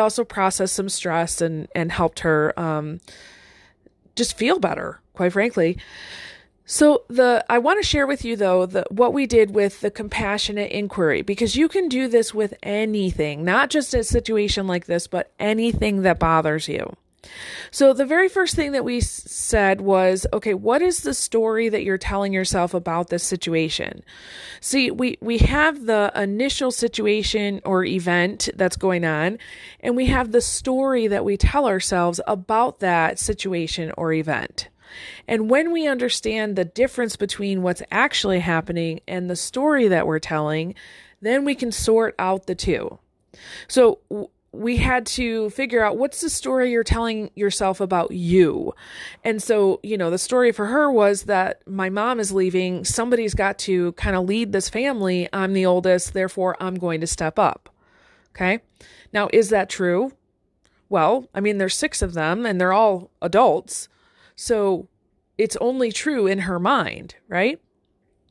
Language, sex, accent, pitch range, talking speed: English, female, American, 180-235 Hz, 165 wpm